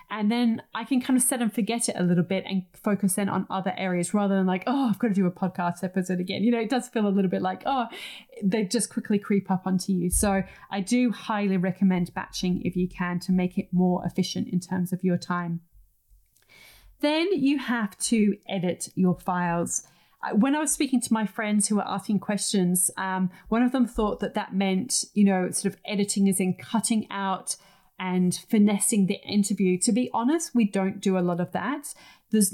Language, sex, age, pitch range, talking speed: English, female, 30-49, 185-220 Hz, 215 wpm